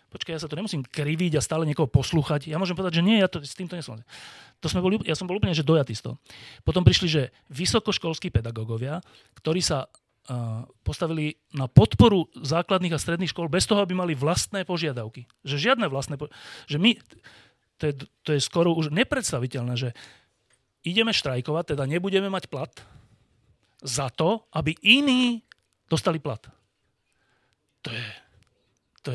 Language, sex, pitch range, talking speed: Slovak, male, 125-170 Hz, 165 wpm